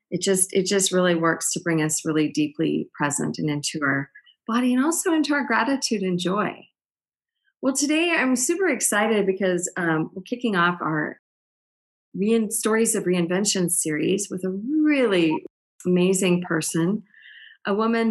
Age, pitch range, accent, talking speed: 40-59, 170-235 Hz, American, 150 wpm